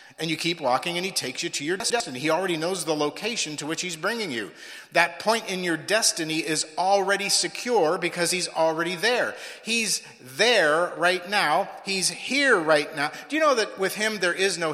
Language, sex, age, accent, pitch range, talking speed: English, male, 50-69, American, 165-235 Hz, 205 wpm